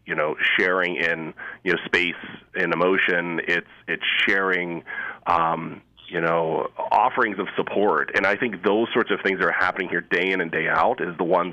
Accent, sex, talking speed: American, male, 195 wpm